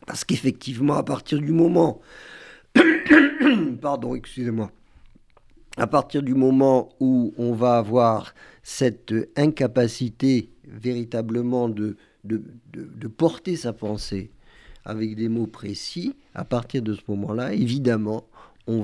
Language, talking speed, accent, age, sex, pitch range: French, 120 wpm, French, 50-69, male, 110-135 Hz